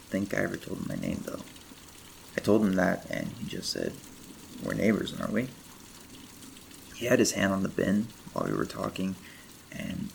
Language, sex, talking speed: English, male, 190 wpm